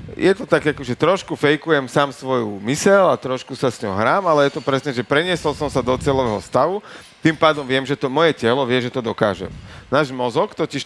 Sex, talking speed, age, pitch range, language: male, 225 wpm, 40-59, 115-150 Hz, Slovak